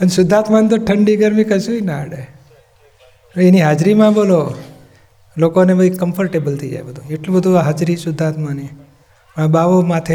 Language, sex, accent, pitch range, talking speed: Gujarati, male, native, 135-175 Hz, 140 wpm